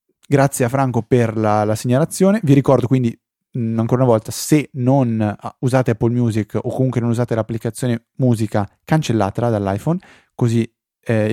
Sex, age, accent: male, 20-39, native